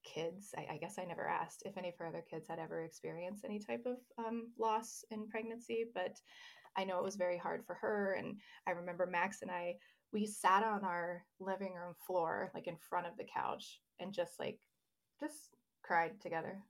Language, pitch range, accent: English, 180-205 Hz, American